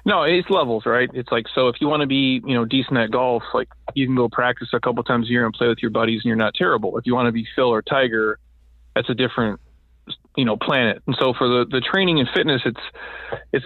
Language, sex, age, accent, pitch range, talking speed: English, male, 30-49, American, 115-130 Hz, 265 wpm